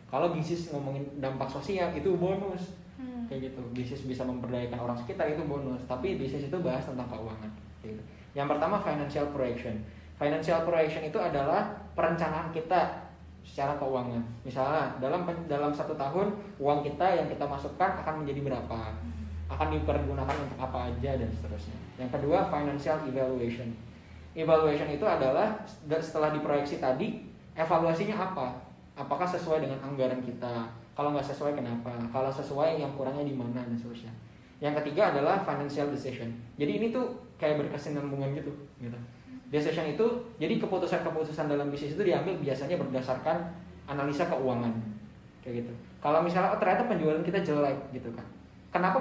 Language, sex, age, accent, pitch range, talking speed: Indonesian, male, 10-29, native, 125-165 Hz, 145 wpm